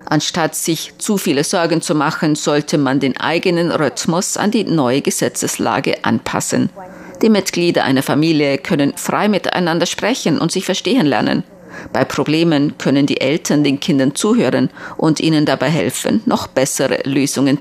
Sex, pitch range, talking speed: female, 145-185 Hz, 150 wpm